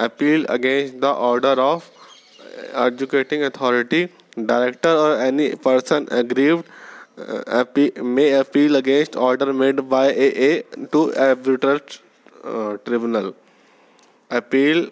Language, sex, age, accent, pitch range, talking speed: English, male, 20-39, Indian, 125-145 Hz, 105 wpm